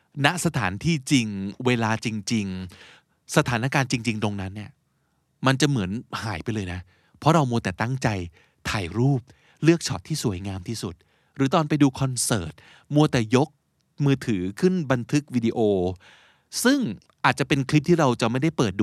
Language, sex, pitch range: Thai, male, 105-145 Hz